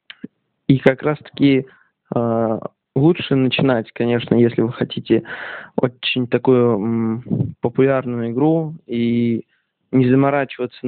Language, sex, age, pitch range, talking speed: Russian, male, 20-39, 115-135 Hz, 90 wpm